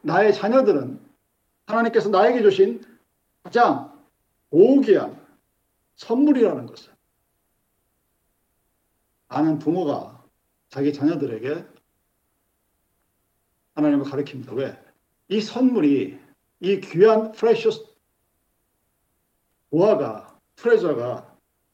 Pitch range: 145-235 Hz